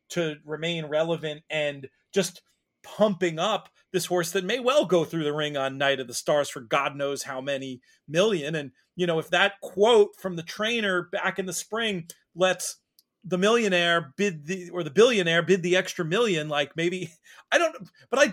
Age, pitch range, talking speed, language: 30-49, 145-195 Hz, 190 wpm, English